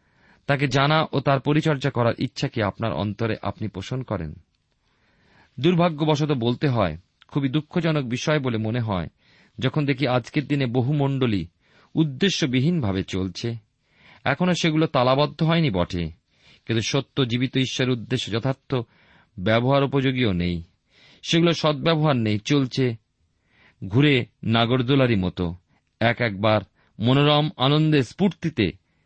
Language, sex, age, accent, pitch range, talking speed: Bengali, male, 40-59, native, 105-150 Hz, 110 wpm